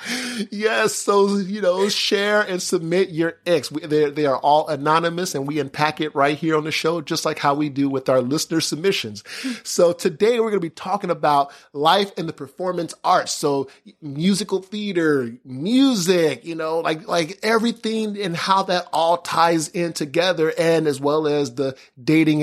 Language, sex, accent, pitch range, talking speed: English, male, American, 150-185 Hz, 180 wpm